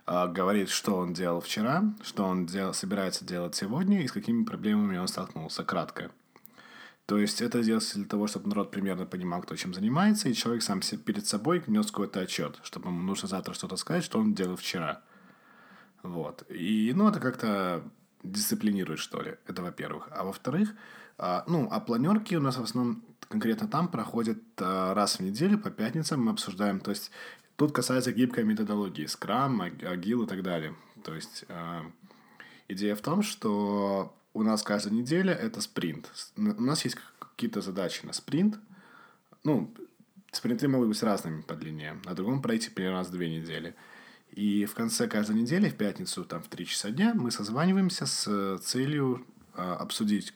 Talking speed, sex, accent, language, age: 165 wpm, male, native, Russian, 20-39